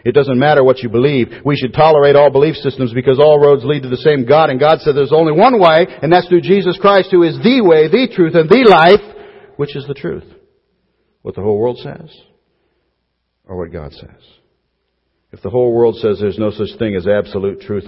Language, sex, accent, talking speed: English, male, American, 220 wpm